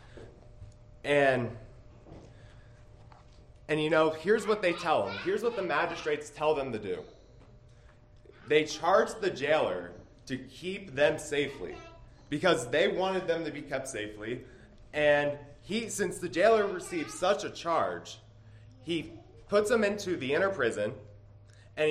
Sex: male